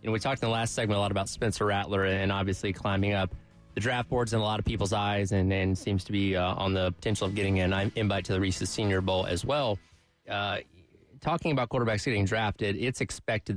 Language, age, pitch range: English, 20-39, 100-115 Hz